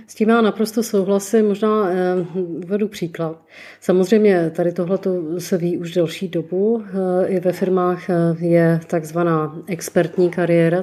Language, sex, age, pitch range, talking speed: Czech, female, 30-49, 170-190 Hz, 125 wpm